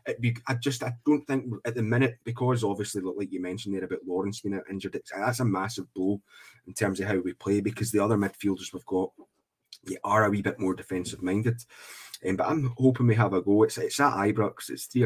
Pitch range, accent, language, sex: 95-115 Hz, British, English, male